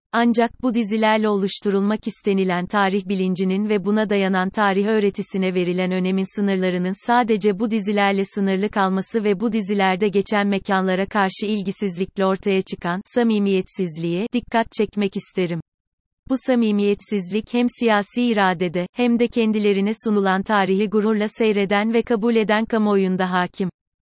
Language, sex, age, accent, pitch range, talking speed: Turkish, female, 30-49, native, 190-220 Hz, 125 wpm